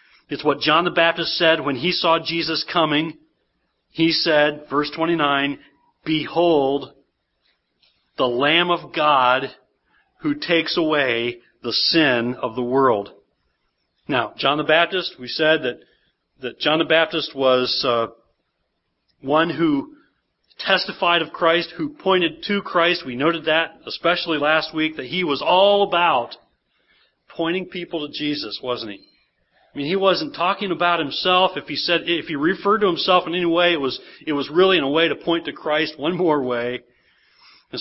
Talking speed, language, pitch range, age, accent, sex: 160 wpm, English, 140-180 Hz, 40-59, American, male